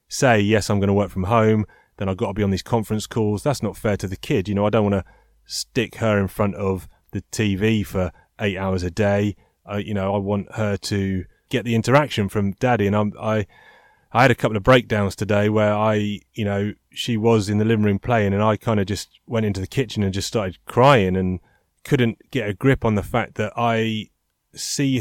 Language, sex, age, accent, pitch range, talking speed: English, male, 30-49, British, 100-120 Hz, 235 wpm